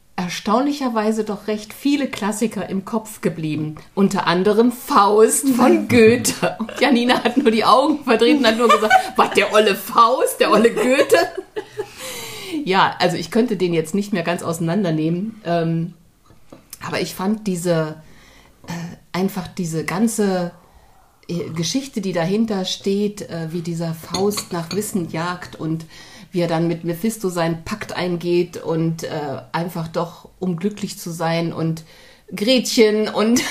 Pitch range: 170-220 Hz